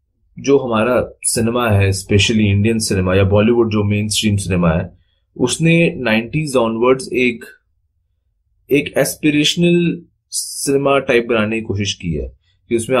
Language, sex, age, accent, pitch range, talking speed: Hindi, male, 20-39, native, 95-130 Hz, 130 wpm